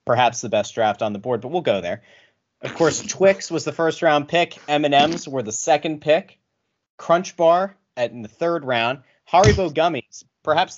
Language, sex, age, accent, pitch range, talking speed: English, male, 30-49, American, 120-165 Hz, 185 wpm